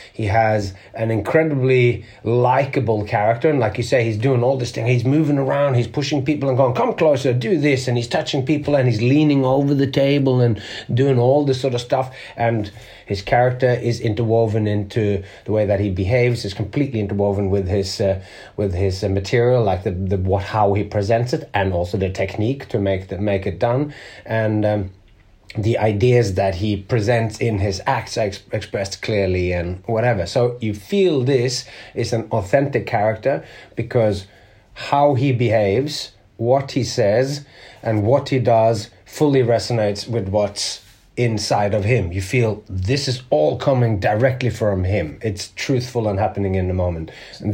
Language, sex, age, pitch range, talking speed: English, male, 30-49, 100-130 Hz, 180 wpm